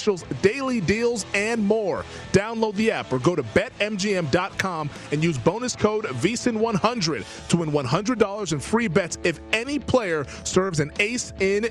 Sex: male